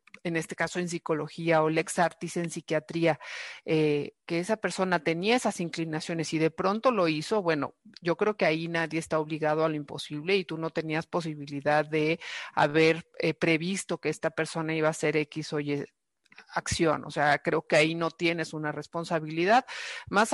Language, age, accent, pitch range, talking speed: Spanish, 50-69, Mexican, 160-215 Hz, 180 wpm